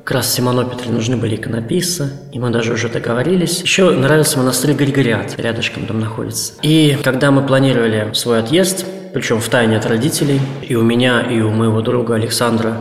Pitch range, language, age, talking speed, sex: 120-155 Hz, Russian, 20-39, 170 wpm, male